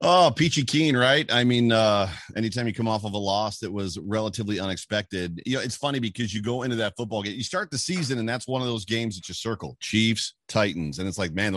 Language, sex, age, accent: English, male, 40-59, American